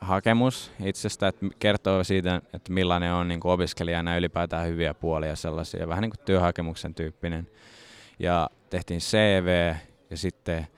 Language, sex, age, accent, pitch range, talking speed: Finnish, male, 20-39, native, 85-100 Hz, 130 wpm